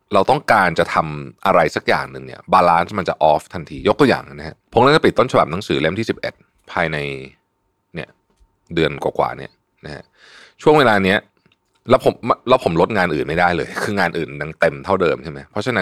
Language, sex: Thai, male